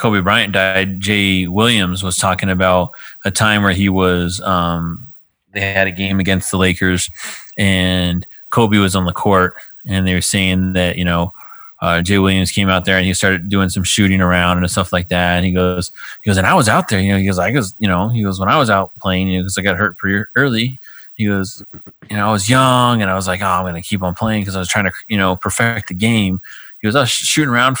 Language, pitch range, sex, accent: English, 95-115 Hz, male, American